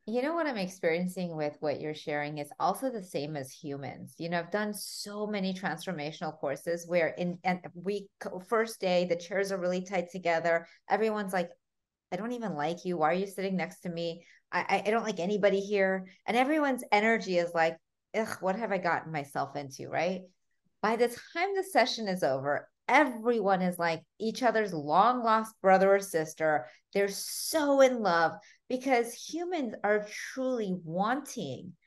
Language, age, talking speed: English, 30-49, 180 wpm